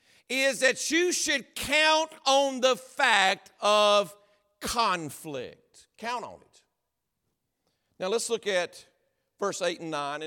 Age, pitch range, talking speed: 50-69, 190-260 Hz, 125 wpm